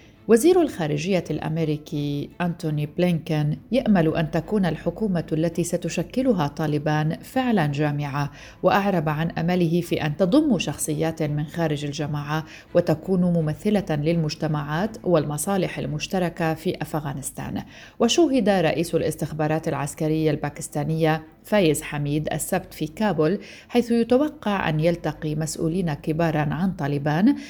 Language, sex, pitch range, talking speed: Arabic, female, 155-190 Hz, 105 wpm